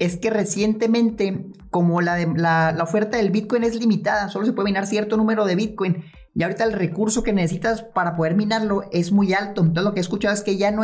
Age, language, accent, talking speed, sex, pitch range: 30-49, Spanish, Mexican, 235 wpm, male, 170-220 Hz